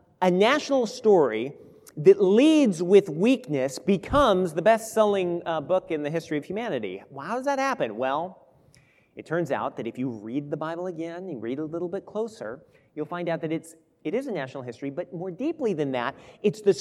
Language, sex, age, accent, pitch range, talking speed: English, male, 40-59, American, 140-205 Hz, 190 wpm